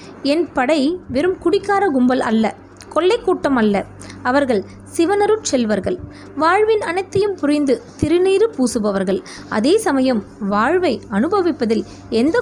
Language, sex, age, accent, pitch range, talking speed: Tamil, female, 20-39, native, 230-330 Hz, 105 wpm